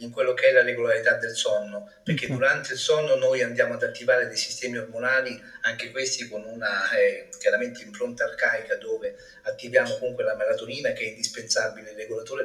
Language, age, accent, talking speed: Italian, 40-59, native, 180 wpm